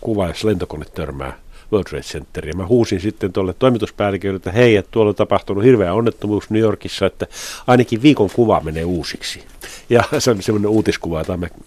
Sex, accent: male, native